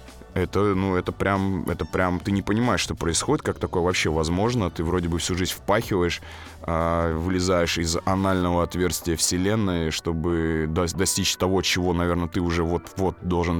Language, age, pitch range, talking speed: Russian, 20-39, 85-105 Hz, 155 wpm